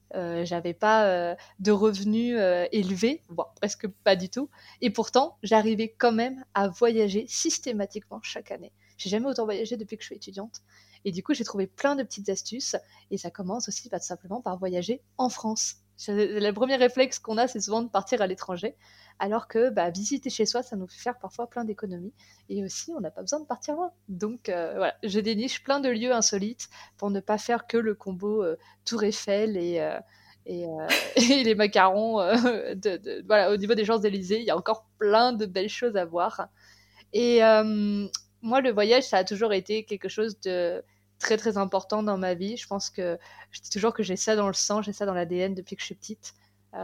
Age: 20-39